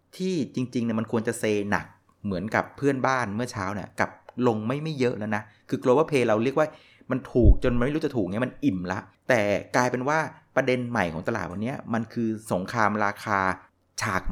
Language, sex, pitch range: Thai, male, 95-130 Hz